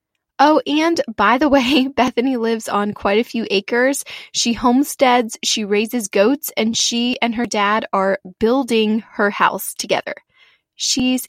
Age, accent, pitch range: 20-39, American, 210-265 Hz